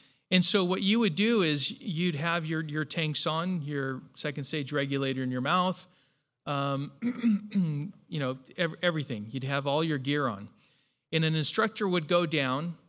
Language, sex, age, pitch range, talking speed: English, male, 40-59, 140-180 Hz, 170 wpm